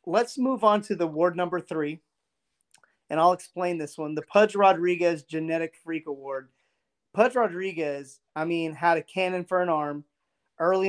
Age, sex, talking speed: 30-49, male, 165 wpm